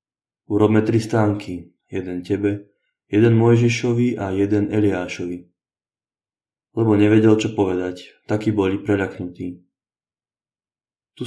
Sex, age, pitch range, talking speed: male, 20-39, 100-110 Hz, 95 wpm